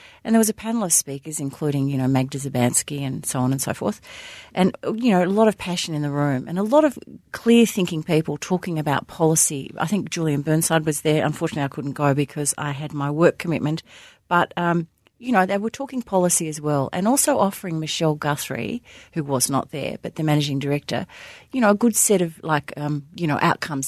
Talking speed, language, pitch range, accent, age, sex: 220 wpm, English, 145-200 Hz, Australian, 40-59, female